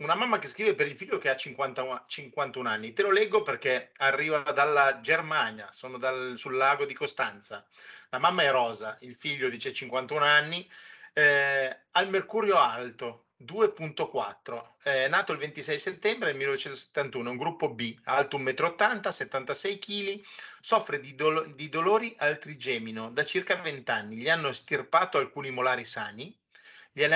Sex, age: male, 30-49